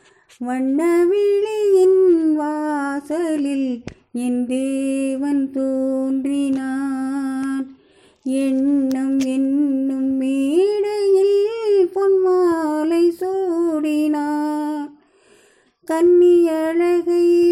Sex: female